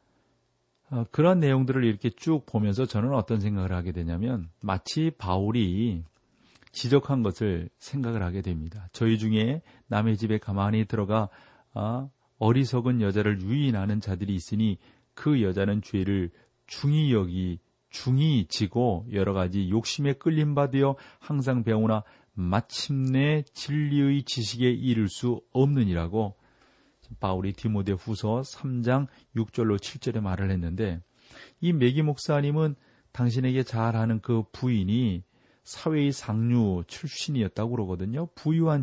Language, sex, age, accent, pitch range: Korean, male, 40-59, native, 105-135 Hz